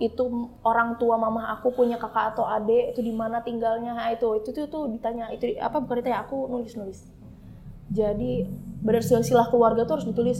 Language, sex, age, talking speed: Indonesian, female, 20-39, 165 wpm